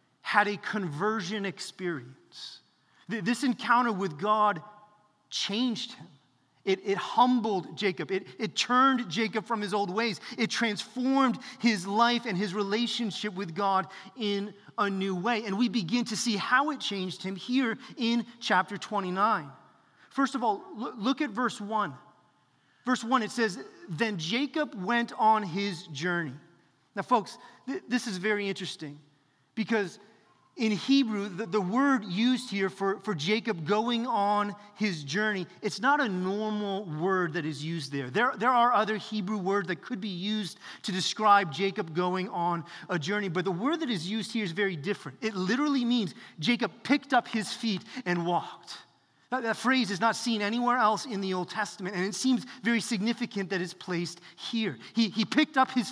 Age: 30-49